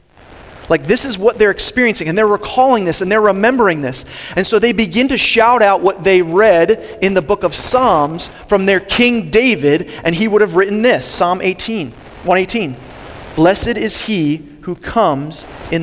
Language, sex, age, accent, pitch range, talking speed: English, male, 30-49, American, 150-200 Hz, 180 wpm